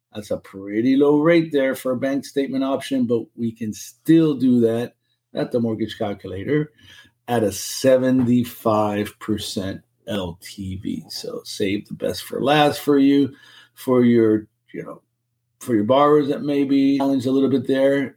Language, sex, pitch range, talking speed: English, male, 110-135 Hz, 155 wpm